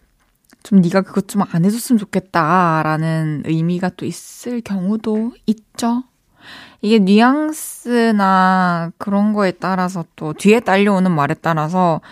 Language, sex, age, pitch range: Korean, female, 20-39, 175-230 Hz